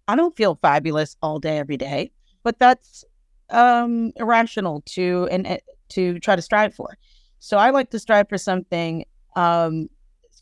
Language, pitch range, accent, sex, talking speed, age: English, 170-205 Hz, American, female, 160 wpm, 30-49